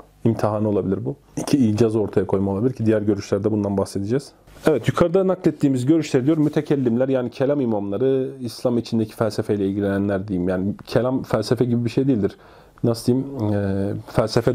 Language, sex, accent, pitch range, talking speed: Turkish, male, native, 110-135 Hz, 155 wpm